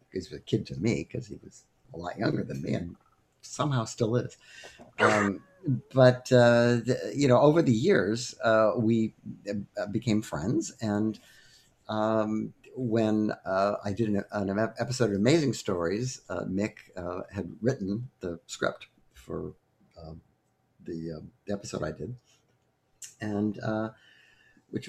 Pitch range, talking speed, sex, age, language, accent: 95-125 Hz, 140 wpm, male, 60-79, English, American